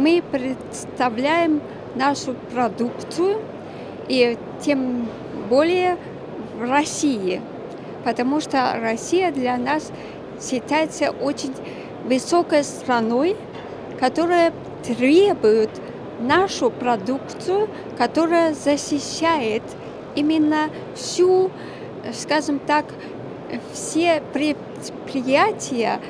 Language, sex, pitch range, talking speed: Russian, female, 250-315 Hz, 70 wpm